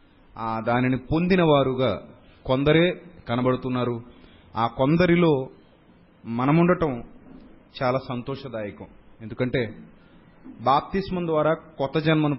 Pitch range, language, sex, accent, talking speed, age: 125-170 Hz, Telugu, male, native, 75 wpm, 30-49